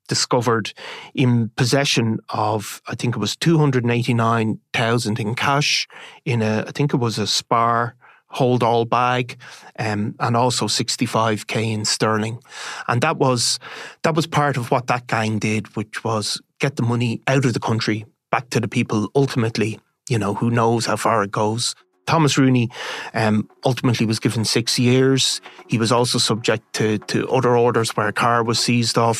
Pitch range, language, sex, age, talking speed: 110-130 Hz, English, male, 30-49, 170 wpm